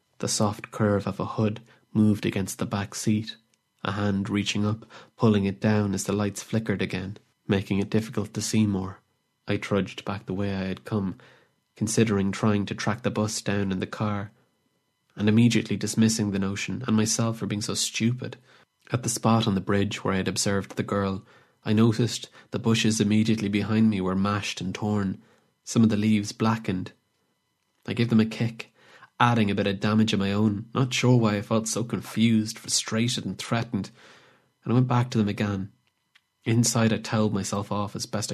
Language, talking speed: English, 195 wpm